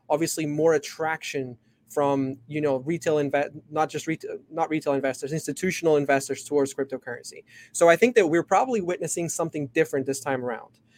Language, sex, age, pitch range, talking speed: English, male, 20-39, 140-170 Hz, 165 wpm